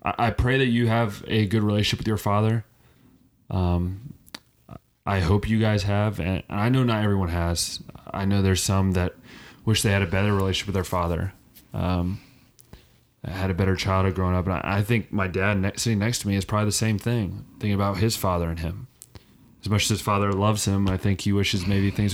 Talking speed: 210 wpm